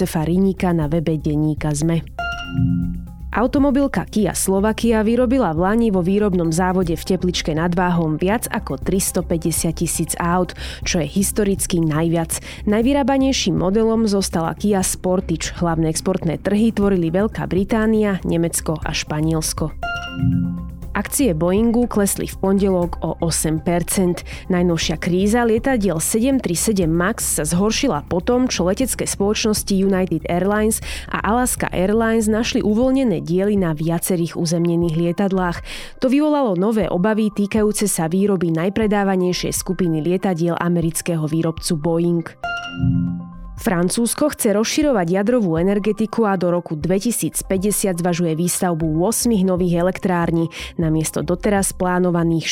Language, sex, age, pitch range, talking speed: Slovak, female, 20-39, 170-215 Hz, 115 wpm